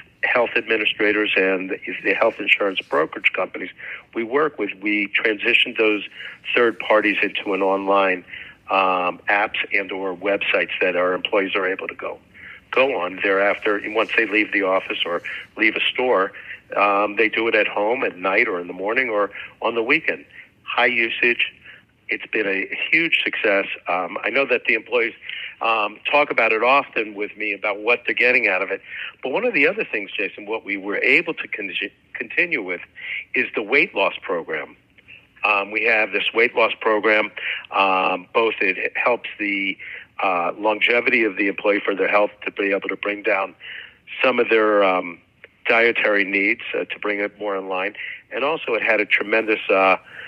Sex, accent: male, American